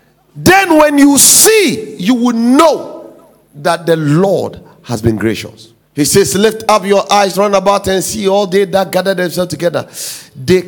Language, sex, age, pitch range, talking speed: English, male, 50-69, 165-220 Hz, 170 wpm